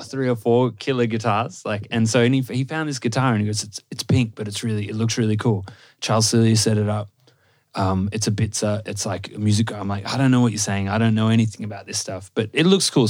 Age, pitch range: 20-39, 105-125 Hz